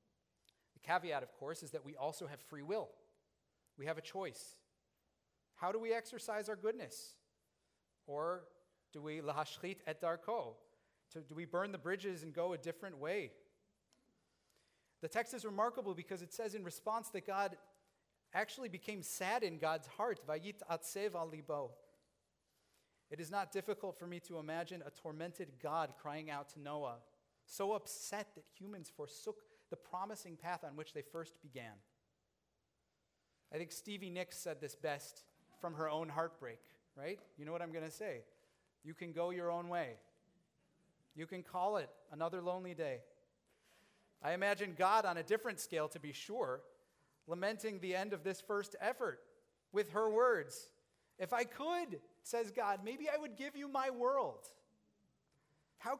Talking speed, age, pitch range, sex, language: 160 wpm, 40-59, 160-220 Hz, male, English